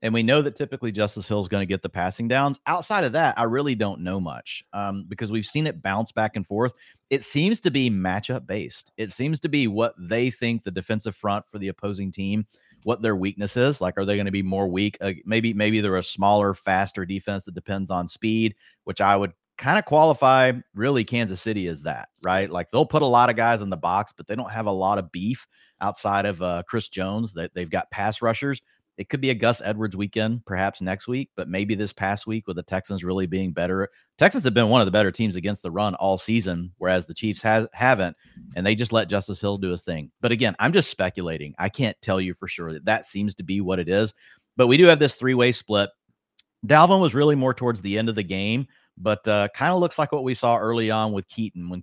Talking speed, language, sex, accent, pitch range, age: 245 wpm, English, male, American, 95-115 Hz, 30-49